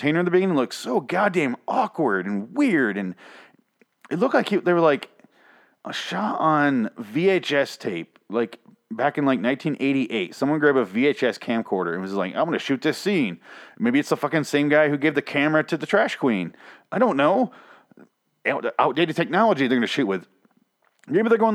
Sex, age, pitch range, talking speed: male, 30-49, 110-170 Hz, 185 wpm